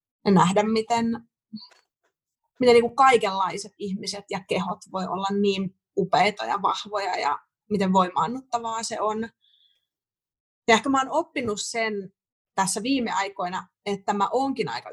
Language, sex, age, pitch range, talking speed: Finnish, female, 30-49, 195-235 Hz, 135 wpm